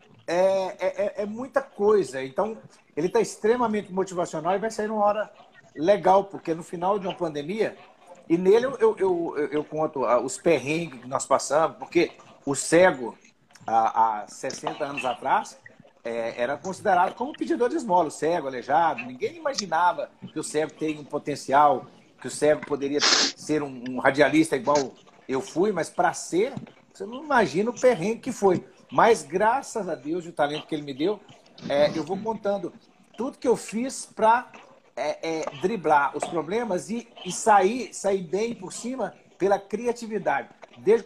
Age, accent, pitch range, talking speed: 50-69, Brazilian, 155-225 Hz, 170 wpm